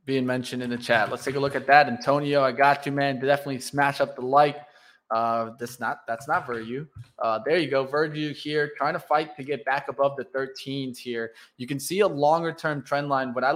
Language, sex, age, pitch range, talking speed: English, male, 20-39, 130-150 Hz, 240 wpm